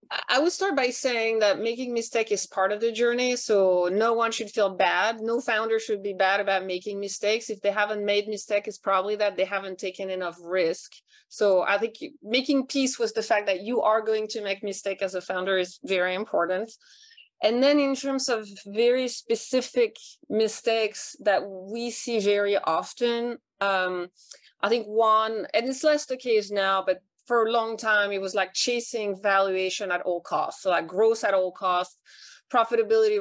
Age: 30-49